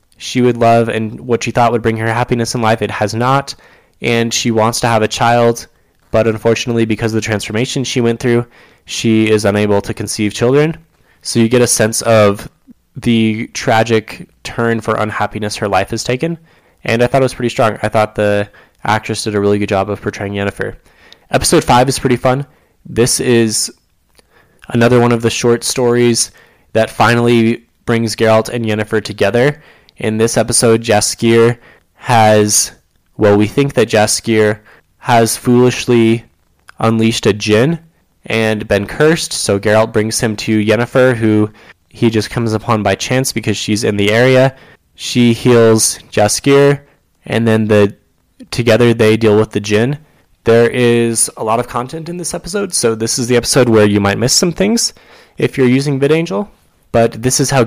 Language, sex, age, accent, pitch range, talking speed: English, male, 10-29, American, 110-125 Hz, 175 wpm